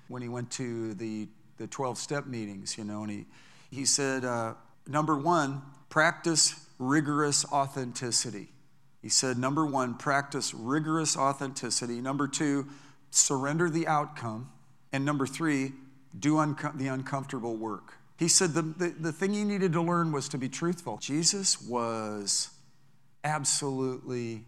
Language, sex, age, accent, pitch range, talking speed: English, male, 40-59, American, 120-150 Hz, 140 wpm